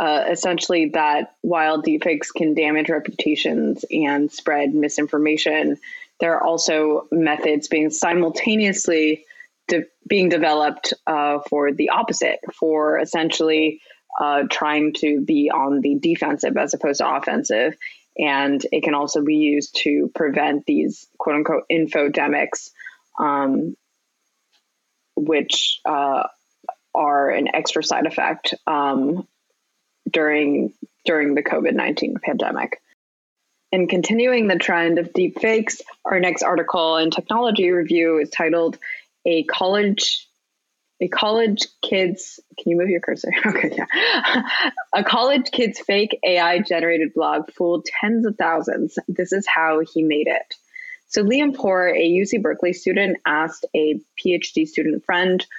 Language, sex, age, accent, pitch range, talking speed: English, female, 20-39, American, 155-195 Hz, 130 wpm